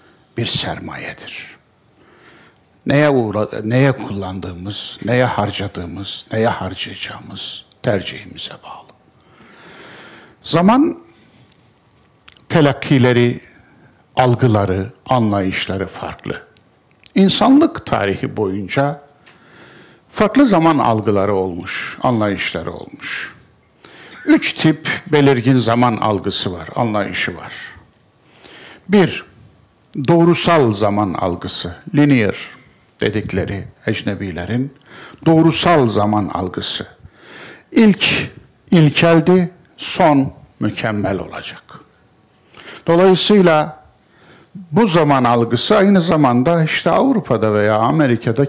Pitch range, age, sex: 105-165 Hz, 60-79, male